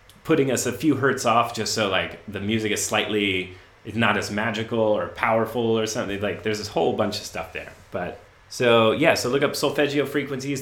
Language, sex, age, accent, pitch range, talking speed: English, male, 30-49, American, 100-130 Hz, 210 wpm